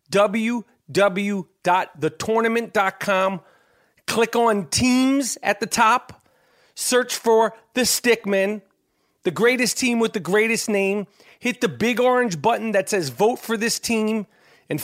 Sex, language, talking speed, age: male, English, 120 wpm, 40-59